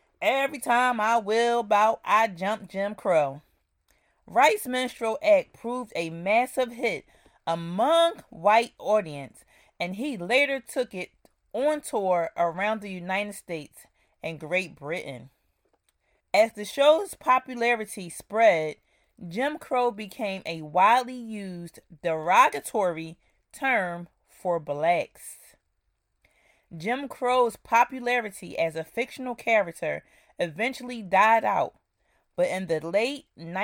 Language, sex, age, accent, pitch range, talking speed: English, female, 30-49, American, 175-245 Hz, 110 wpm